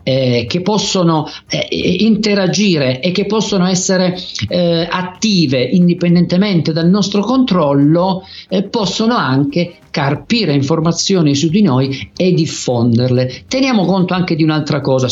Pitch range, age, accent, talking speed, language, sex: 135-185 Hz, 50-69, native, 125 wpm, Italian, male